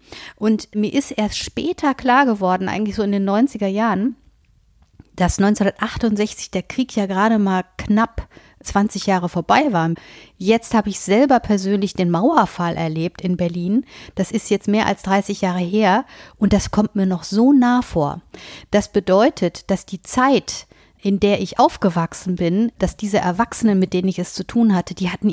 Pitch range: 185-230 Hz